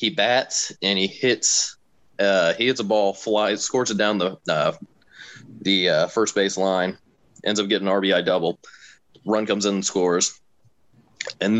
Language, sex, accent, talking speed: English, male, American, 170 wpm